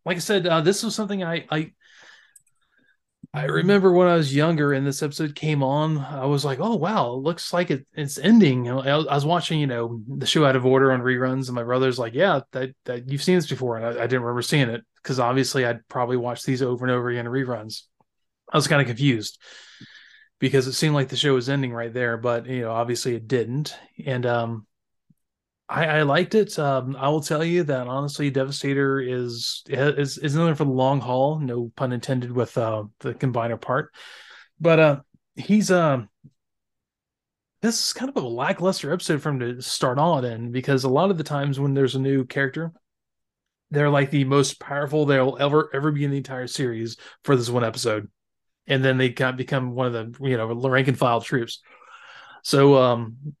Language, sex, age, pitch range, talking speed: English, male, 20-39, 125-150 Hz, 210 wpm